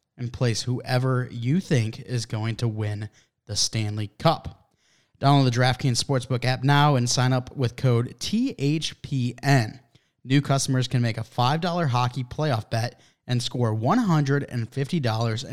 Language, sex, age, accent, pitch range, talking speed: English, male, 20-39, American, 120-150 Hz, 140 wpm